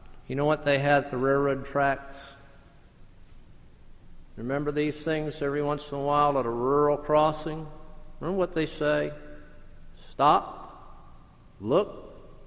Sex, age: male, 50-69